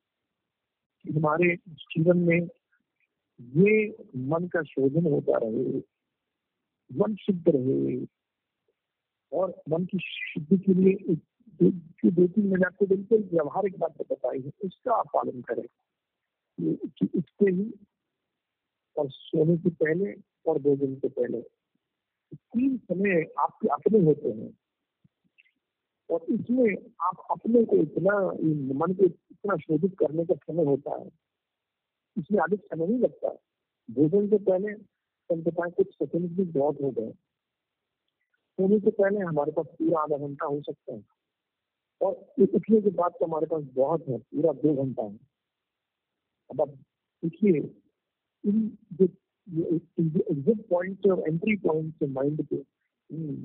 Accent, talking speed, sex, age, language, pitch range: native, 120 wpm, male, 50-69, Hindi, 155-200 Hz